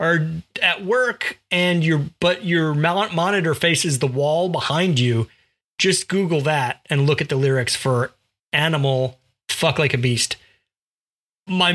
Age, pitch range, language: 40-59, 135-185 Hz, English